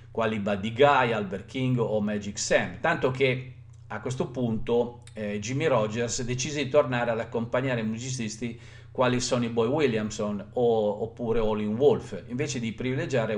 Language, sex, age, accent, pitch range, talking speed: Italian, male, 50-69, native, 110-135 Hz, 150 wpm